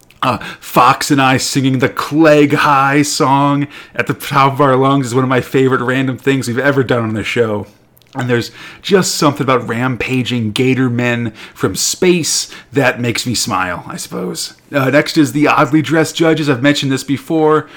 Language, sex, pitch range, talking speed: English, male, 120-155 Hz, 185 wpm